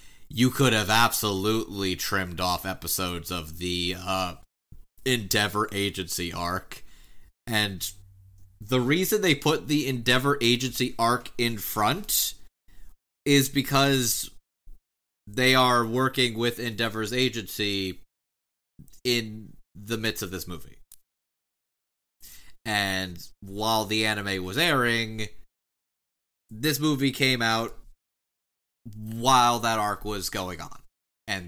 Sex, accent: male, American